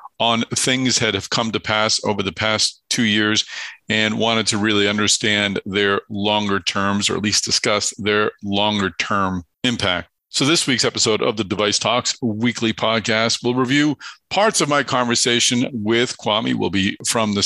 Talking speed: 170 wpm